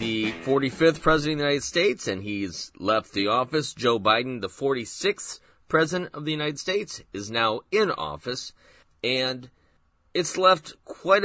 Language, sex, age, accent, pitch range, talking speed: English, male, 30-49, American, 100-145 Hz, 155 wpm